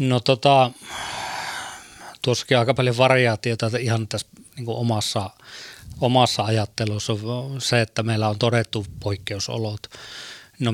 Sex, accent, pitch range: male, native, 105-120 Hz